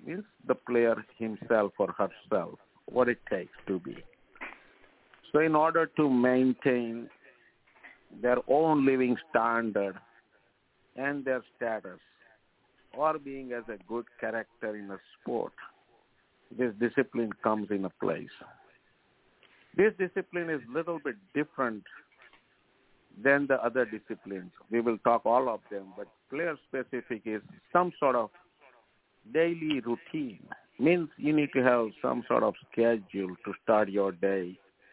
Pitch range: 105-130 Hz